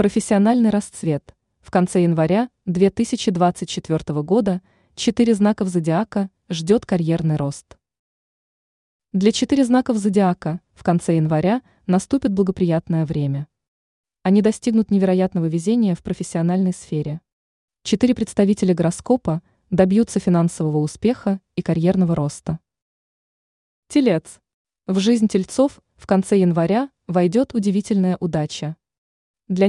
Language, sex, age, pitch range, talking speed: Russian, female, 20-39, 170-220 Hz, 100 wpm